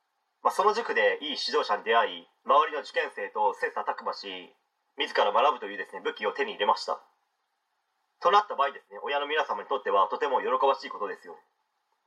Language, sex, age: Japanese, male, 30-49